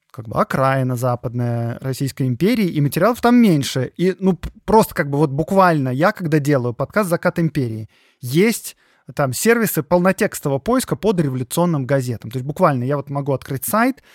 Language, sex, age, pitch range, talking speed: Russian, male, 20-39, 135-180 Hz, 165 wpm